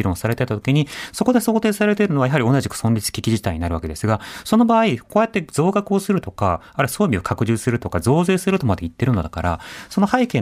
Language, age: Japanese, 30-49